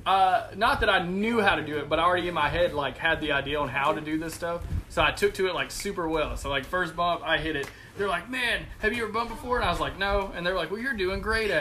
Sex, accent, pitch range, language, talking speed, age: male, American, 150-225 Hz, English, 315 wpm, 20-39